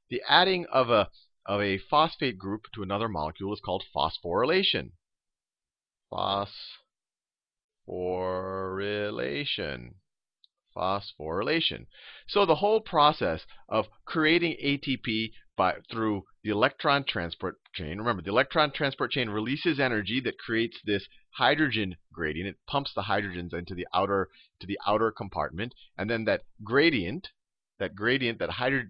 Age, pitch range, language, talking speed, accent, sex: 40-59, 90-130 Hz, English, 125 wpm, American, male